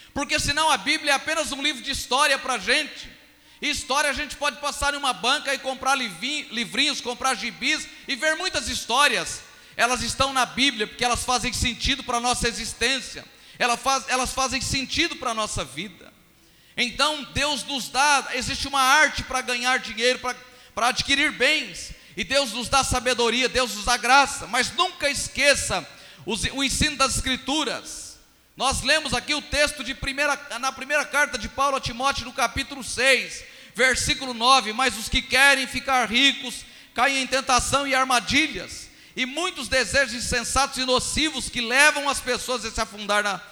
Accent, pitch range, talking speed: Brazilian, 195-275 Hz, 170 wpm